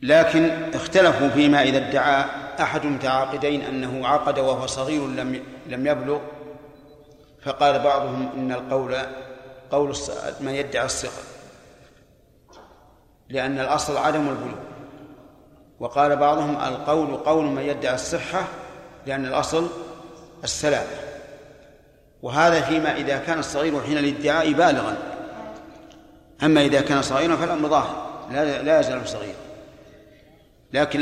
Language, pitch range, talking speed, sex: Arabic, 135-155 Hz, 105 wpm, male